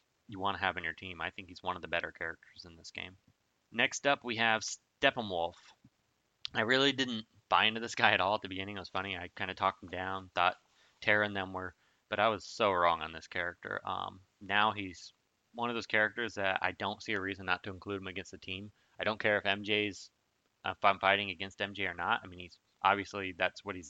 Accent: American